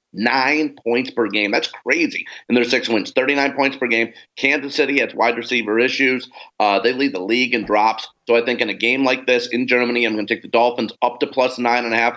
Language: English